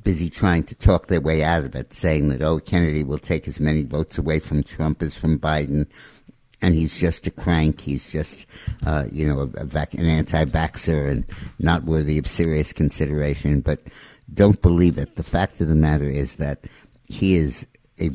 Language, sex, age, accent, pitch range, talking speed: English, male, 60-79, American, 75-90 Hz, 195 wpm